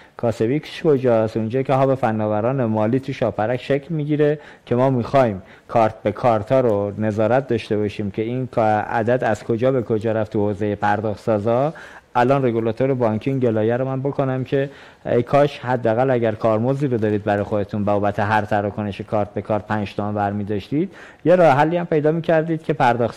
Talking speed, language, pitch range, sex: 175 wpm, Persian, 110-135 Hz, male